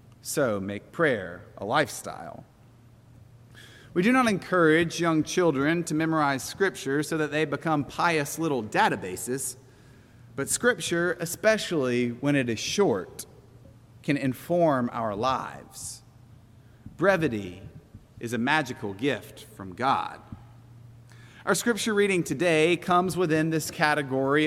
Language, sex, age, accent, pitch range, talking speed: English, male, 30-49, American, 120-165 Hz, 115 wpm